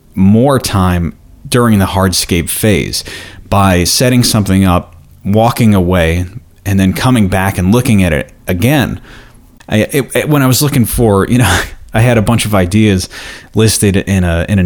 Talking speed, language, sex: 170 wpm, English, male